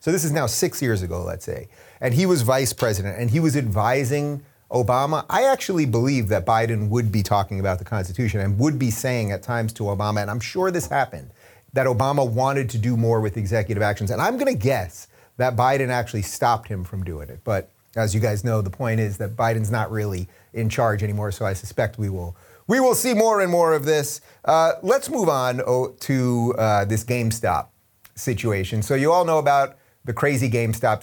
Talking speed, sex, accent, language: 210 wpm, male, American, English